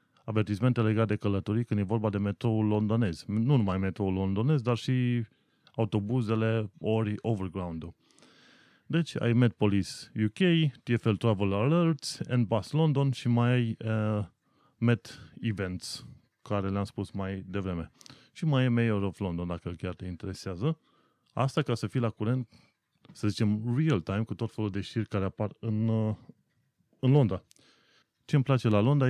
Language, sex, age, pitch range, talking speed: Romanian, male, 30-49, 100-125 Hz, 150 wpm